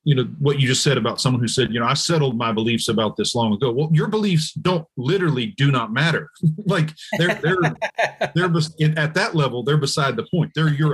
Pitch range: 120-160 Hz